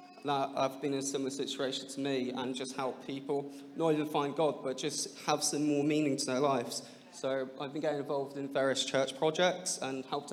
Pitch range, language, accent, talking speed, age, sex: 130-155 Hz, English, British, 215 wpm, 20-39, male